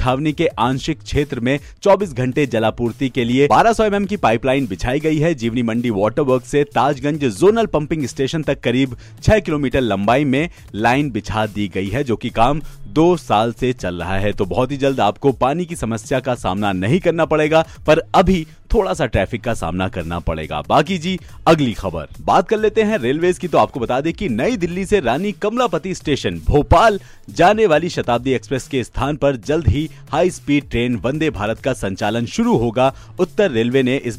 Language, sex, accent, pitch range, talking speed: Hindi, male, native, 115-160 Hz, 200 wpm